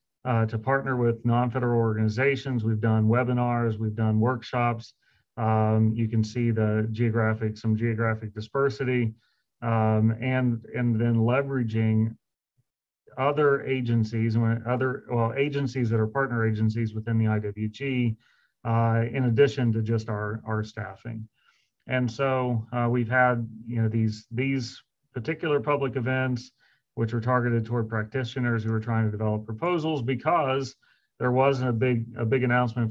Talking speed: 140 wpm